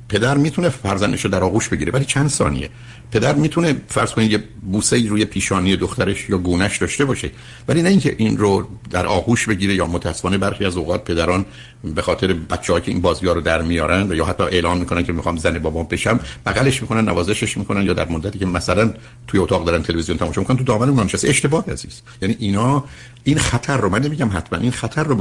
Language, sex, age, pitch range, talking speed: Persian, male, 60-79, 95-130 Hz, 205 wpm